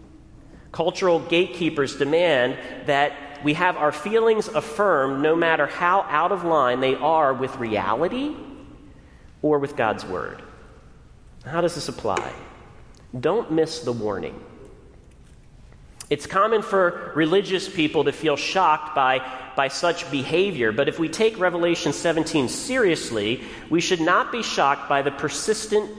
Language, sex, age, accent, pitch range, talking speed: English, male, 40-59, American, 130-170 Hz, 135 wpm